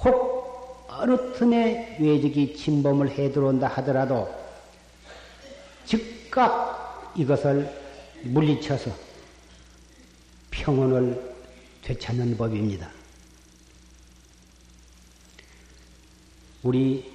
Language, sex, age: Korean, male, 50-69